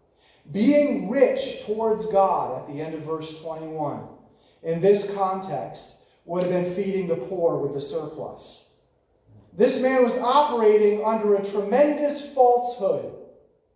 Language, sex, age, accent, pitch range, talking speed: English, male, 30-49, American, 185-260 Hz, 130 wpm